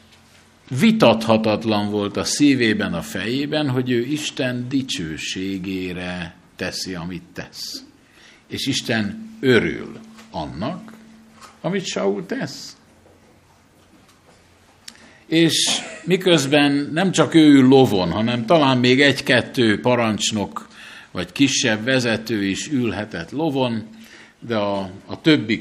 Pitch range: 110-140 Hz